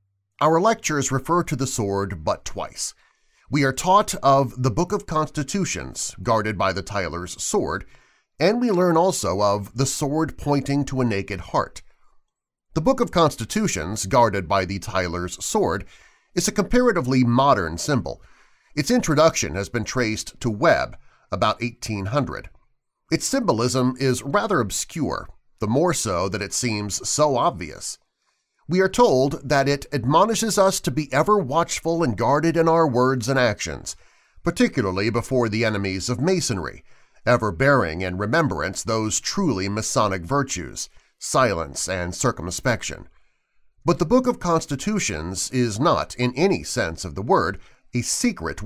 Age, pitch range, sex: 40-59, 105-165 Hz, male